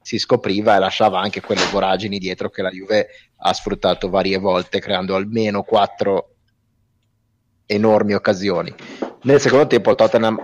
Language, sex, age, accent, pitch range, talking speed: Italian, male, 30-49, native, 100-115 Hz, 140 wpm